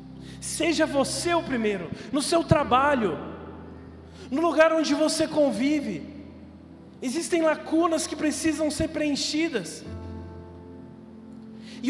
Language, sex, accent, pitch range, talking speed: Portuguese, male, Brazilian, 185-300 Hz, 95 wpm